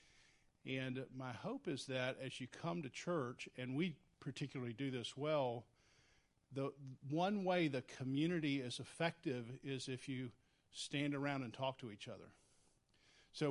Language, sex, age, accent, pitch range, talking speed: English, male, 50-69, American, 130-175 Hz, 150 wpm